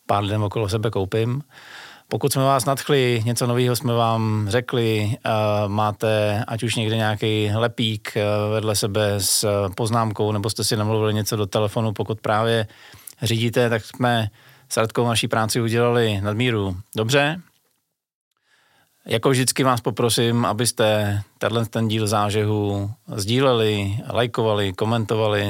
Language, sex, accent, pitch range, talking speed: Czech, male, native, 105-120 Hz, 125 wpm